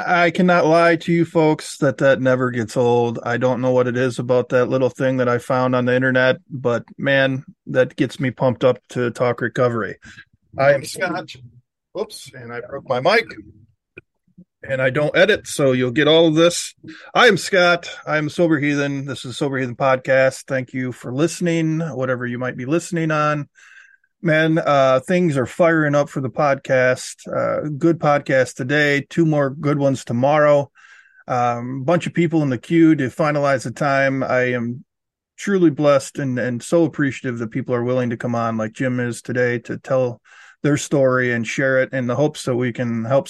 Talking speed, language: 190 wpm, English